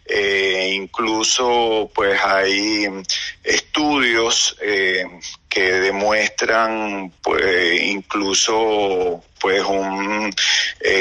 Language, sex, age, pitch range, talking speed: Spanish, male, 40-59, 105-140 Hz, 70 wpm